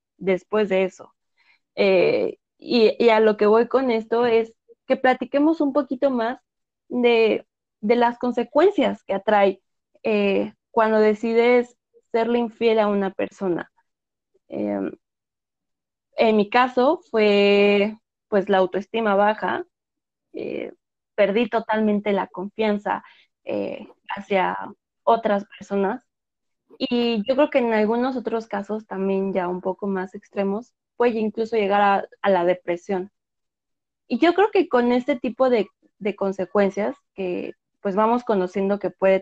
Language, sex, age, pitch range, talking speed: Spanish, female, 20-39, 200-255 Hz, 135 wpm